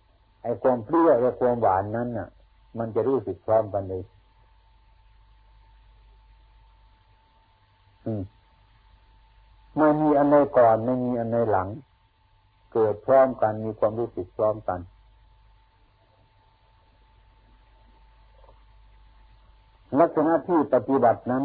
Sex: male